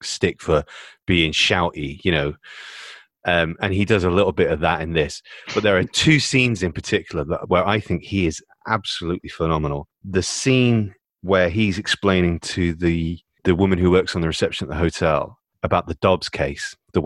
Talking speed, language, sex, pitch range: 185 wpm, English, male, 85-105 Hz